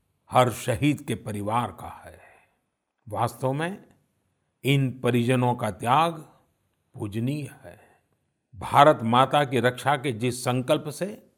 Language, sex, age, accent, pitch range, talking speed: Hindi, male, 50-69, native, 120-160 Hz, 115 wpm